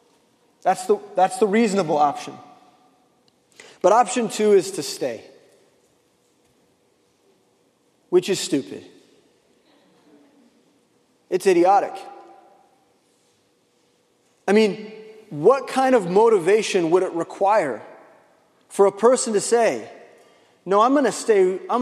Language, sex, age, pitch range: English, male, 30-49, 190-245 Hz